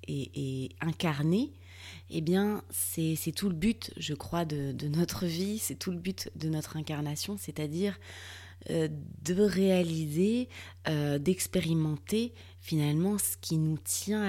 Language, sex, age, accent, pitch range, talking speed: French, female, 20-39, French, 140-180 Hz, 145 wpm